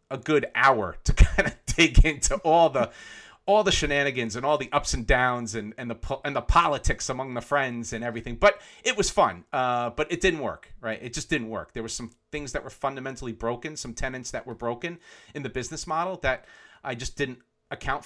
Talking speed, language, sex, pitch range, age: 225 wpm, English, male, 120-160 Hz, 40-59